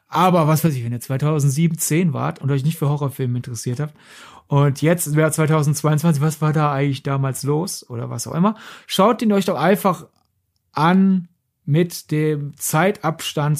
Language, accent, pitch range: German, German, 140-175 Hz